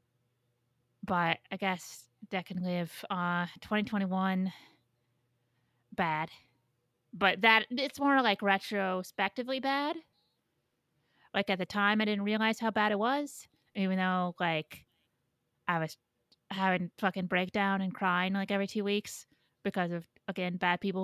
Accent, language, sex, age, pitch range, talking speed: American, English, female, 30-49, 165-205 Hz, 135 wpm